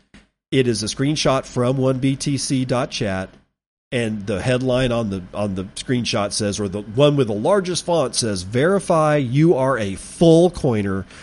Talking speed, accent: 160 wpm, American